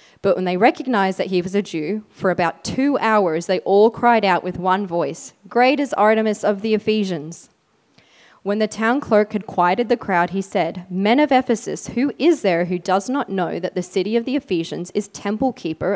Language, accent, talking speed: English, Australian, 205 wpm